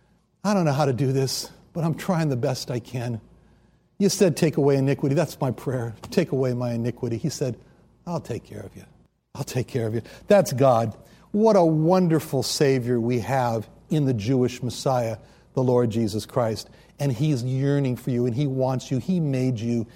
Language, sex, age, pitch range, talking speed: English, male, 60-79, 120-150 Hz, 200 wpm